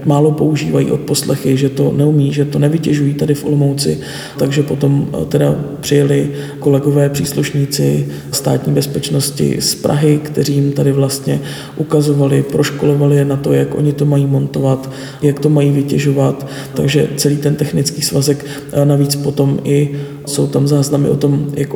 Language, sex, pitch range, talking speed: Czech, male, 140-145 Hz, 150 wpm